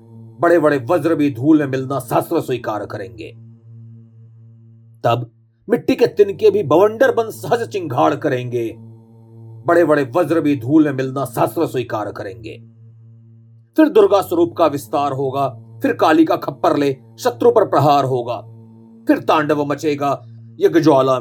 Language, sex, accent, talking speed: Hindi, male, native, 140 wpm